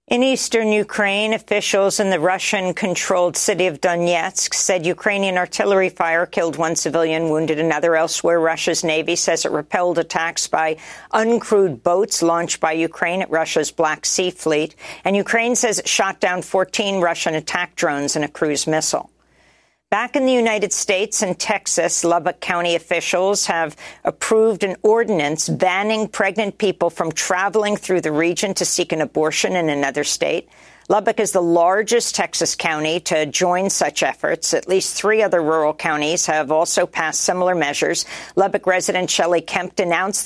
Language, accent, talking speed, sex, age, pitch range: English, American, 160 wpm, female, 50-69, 165-215 Hz